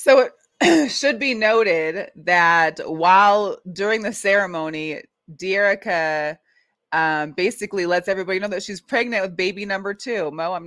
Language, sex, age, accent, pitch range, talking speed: English, female, 20-39, American, 175-225 Hz, 140 wpm